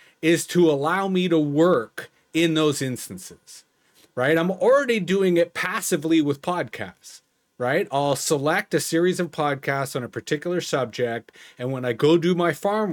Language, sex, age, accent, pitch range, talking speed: English, male, 40-59, American, 140-175 Hz, 160 wpm